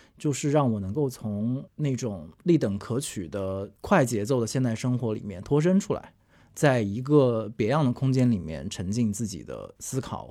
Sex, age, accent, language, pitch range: male, 20-39, native, Chinese, 110-145 Hz